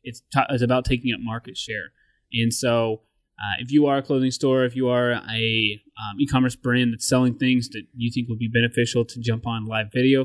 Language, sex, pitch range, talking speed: English, male, 115-130 Hz, 225 wpm